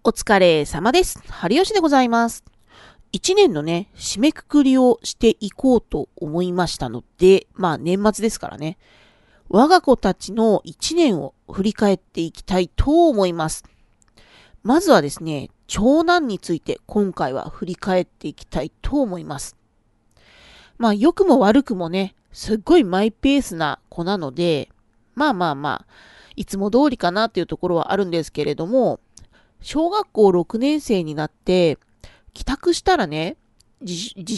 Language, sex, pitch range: Japanese, female, 175-265 Hz